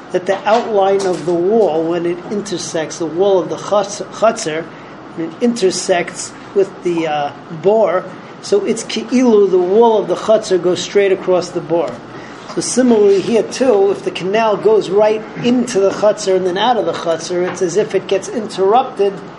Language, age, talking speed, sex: English, 40-59, 185 wpm, male